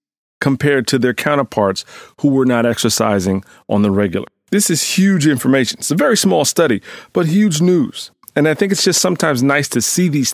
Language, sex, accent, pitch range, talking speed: English, male, American, 125-155 Hz, 190 wpm